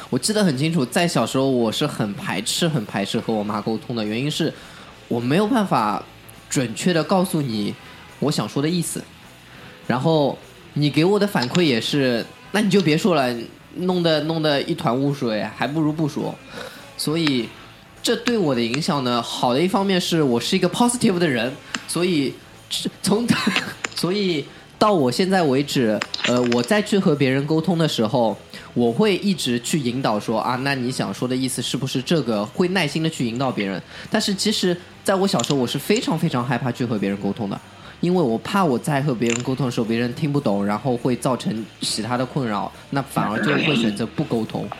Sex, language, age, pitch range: male, Chinese, 20-39, 120-175 Hz